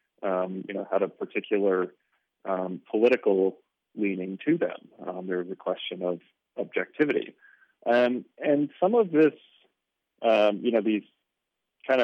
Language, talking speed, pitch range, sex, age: English, 140 wpm, 95-115 Hz, male, 30-49